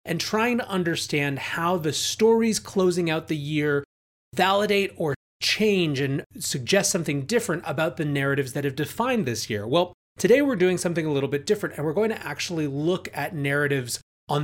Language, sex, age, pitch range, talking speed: English, male, 30-49, 140-185 Hz, 185 wpm